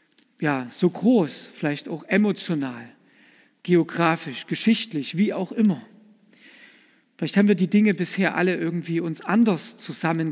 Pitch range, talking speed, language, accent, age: 160-215 Hz, 130 wpm, German, German, 50-69